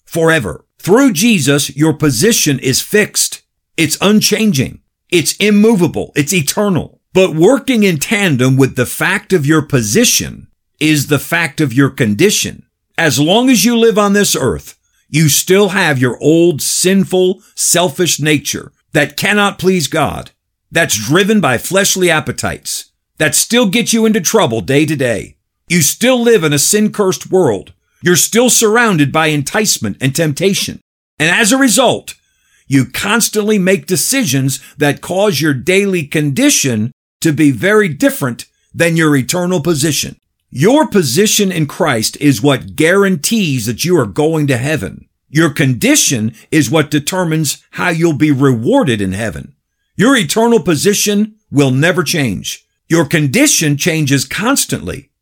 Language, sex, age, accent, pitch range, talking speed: English, male, 50-69, American, 145-205 Hz, 145 wpm